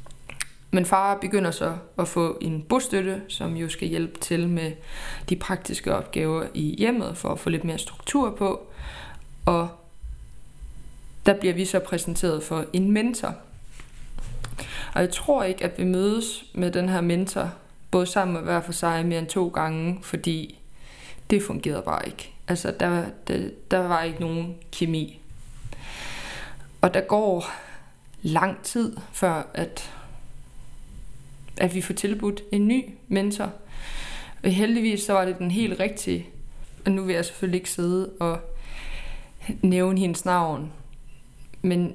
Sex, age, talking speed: female, 20-39, 145 wpm